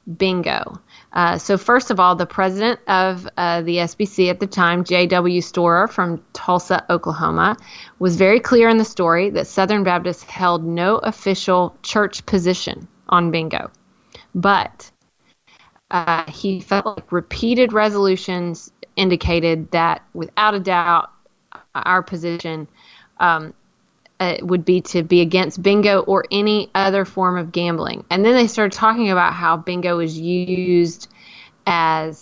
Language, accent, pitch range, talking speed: English, American, 170-200 Hz, 140 wpm